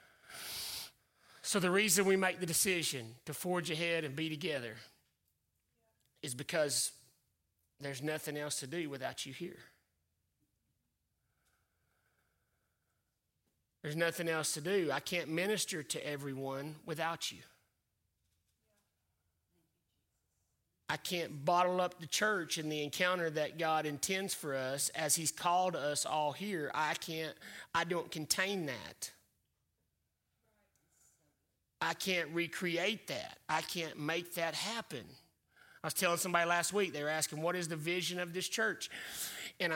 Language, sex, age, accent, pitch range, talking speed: English, male, 30-49, American, 145-180 Hz, 130 wpm